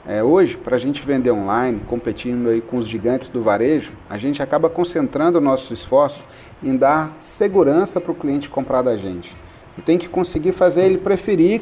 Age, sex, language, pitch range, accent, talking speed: 40-59, male, Portuguese, 125-170 Hz, Brazilian, 185 wpm